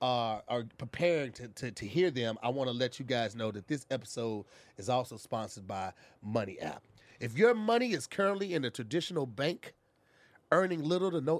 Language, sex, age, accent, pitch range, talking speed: English, male, 30-49, American, 130-180 Hz, 190 wpm